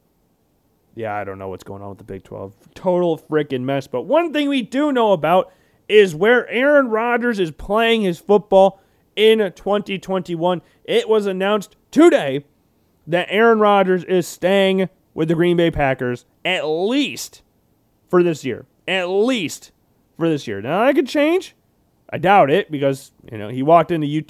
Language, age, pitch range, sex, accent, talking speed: English, 30-49, 150-230 Hz, male, American, 170 wpm